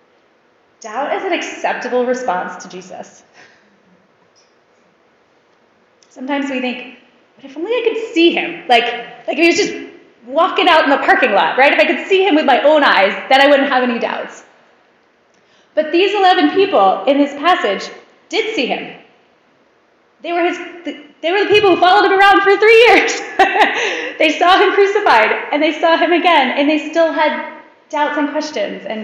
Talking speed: 180 wpm